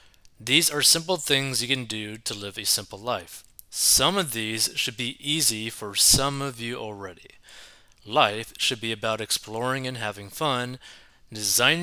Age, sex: 20-39, male